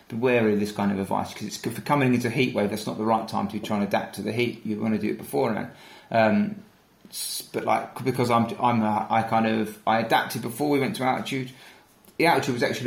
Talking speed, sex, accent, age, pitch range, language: 250 wpm, male, British, 30-49, 110-125 Hz, English